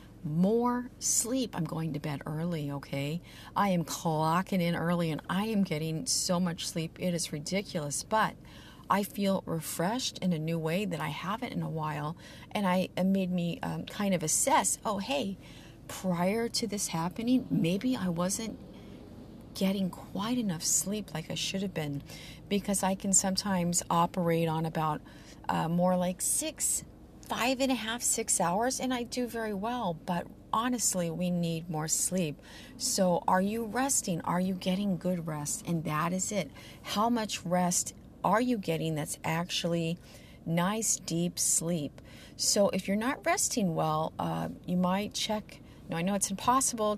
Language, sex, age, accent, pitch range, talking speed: English, female, 40-59, American, 165-210 Hz, 165 wpm